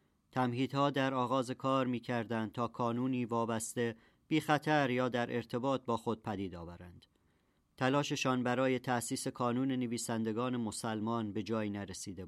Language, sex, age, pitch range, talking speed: Persian, male, 40-59, 105-130 Hz, 125 wpm